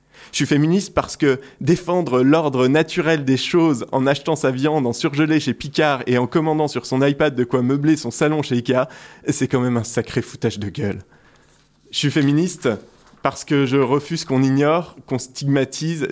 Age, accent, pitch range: 20-39, French, 130-155 Hz